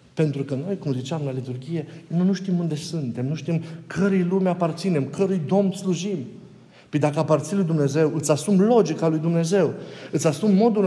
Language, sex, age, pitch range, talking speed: Romanian, male, 50-69, 155-200 Hz, 180 wpm